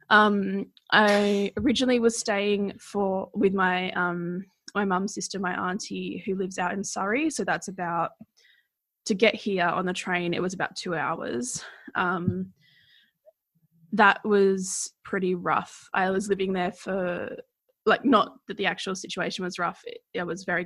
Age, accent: 20-39, Australian